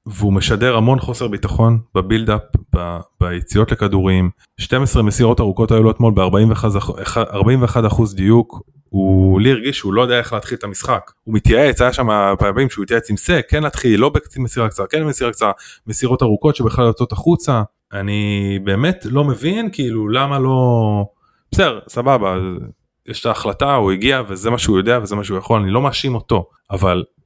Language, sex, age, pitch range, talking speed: Hebrew, male, 20-39, 100-125 Hz, 160 wpm